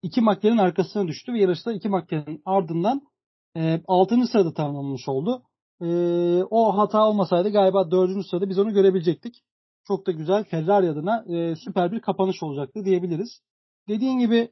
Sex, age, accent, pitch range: male, 40-59, native, 165-210 Hz